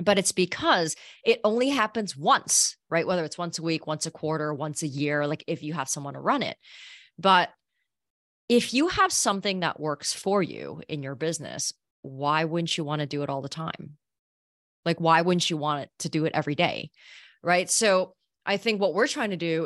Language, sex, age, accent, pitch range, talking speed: English, female, 30-49, American, 155-210 Hz, 210 wpm